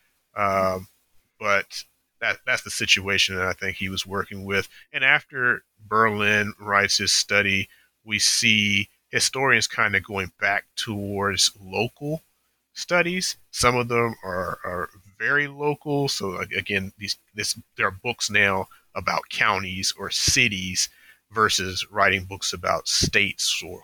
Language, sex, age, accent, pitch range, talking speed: English, male, 30-49, American, 95-110 Hz, 135 wpm